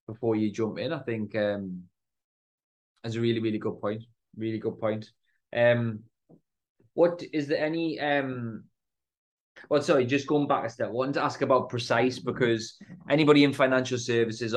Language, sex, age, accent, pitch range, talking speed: English, male, 20-39, British, 110-130 Hz, 165 wpm